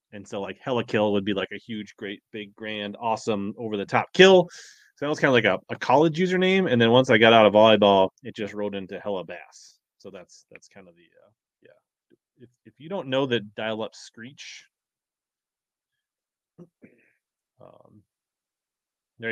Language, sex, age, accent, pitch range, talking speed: English, male, 20-39, American, 110-160 Hz, 180 wpm